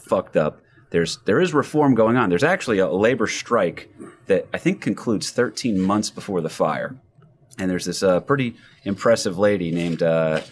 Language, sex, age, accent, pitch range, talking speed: English, male, 30-49, American, 85-115 Hz, 175 wpm